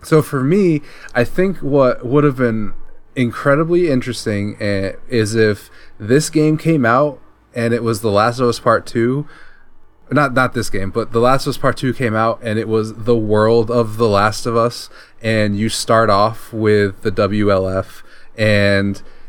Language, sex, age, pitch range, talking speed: English, male, 20-39, 105-120 Hz, 175 wpm